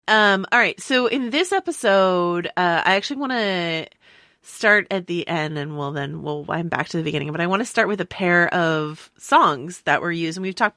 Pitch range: 145-175 Hz